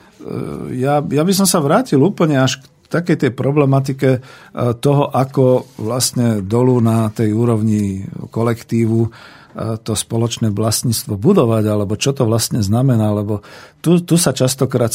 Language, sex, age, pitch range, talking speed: Slovak, male, 50-69, 110-135 Hz, 135 wpm